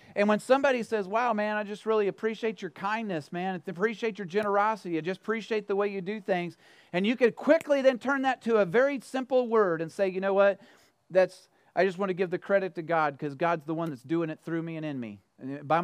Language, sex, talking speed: English, male, 250 wpm